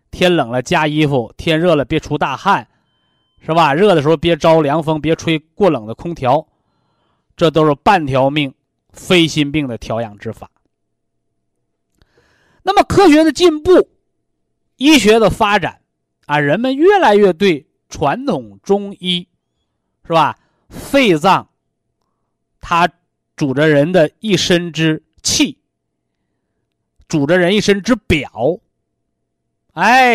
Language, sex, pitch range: Chinese, male, 130-200 Hz